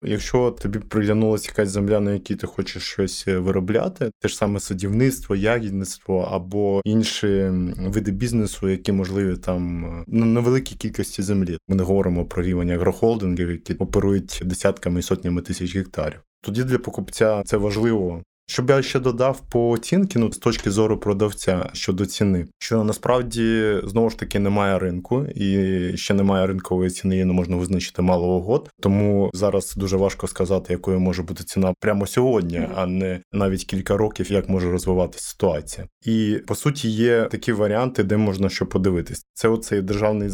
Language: Ukrainian